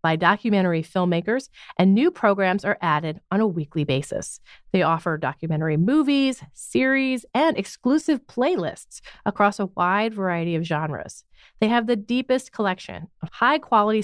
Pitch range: 170-250 Hz